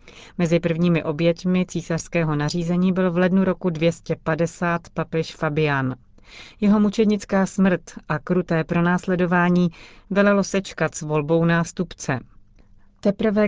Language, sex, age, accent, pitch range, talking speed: Czech, female, 30-49, native, 150-180 Hz, 105 wpm